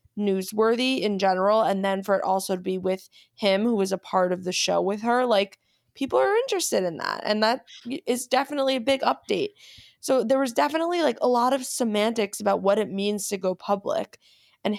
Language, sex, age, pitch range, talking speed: English, female, 20-39, 185-225 Hz, 205 wpm